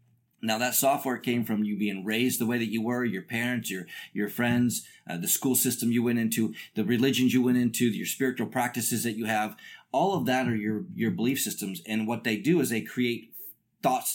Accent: American